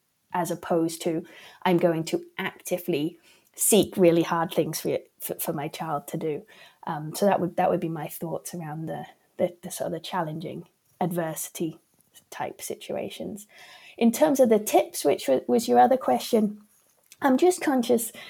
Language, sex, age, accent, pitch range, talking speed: English, female, 30-49, British, 180-215 Hz, 165 wpm